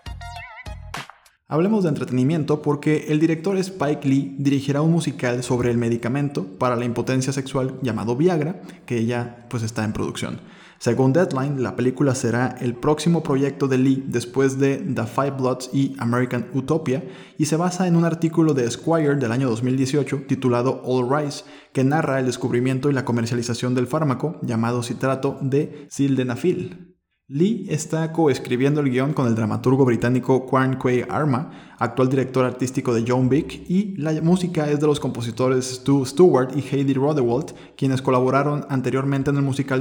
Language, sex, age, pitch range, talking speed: Spanish, male, 20-39, 125-150 Hz, 160 wpm